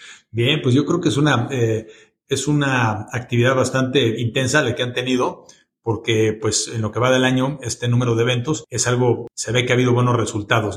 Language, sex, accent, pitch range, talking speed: Spanish, male, Mexican, 110-135 Hz, 210 wpm